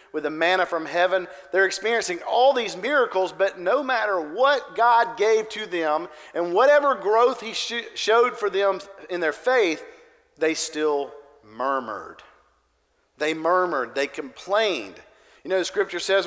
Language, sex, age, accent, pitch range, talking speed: English, male, 40-59, American, 160-230 Hz, 150 wpm